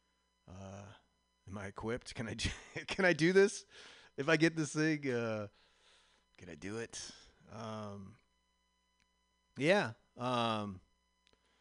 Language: English